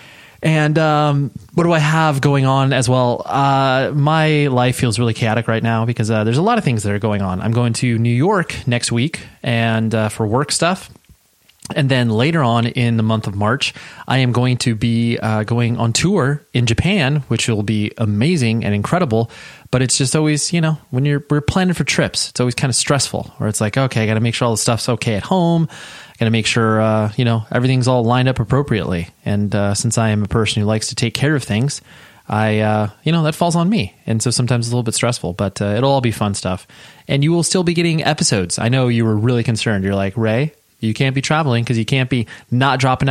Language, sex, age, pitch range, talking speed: English, male, 20-39, 110-145 Hz, 245 wpm